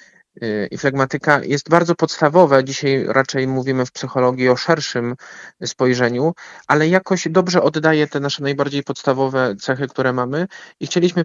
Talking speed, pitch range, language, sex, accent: 140 wpm, 120-155 Hz, Polish, male, native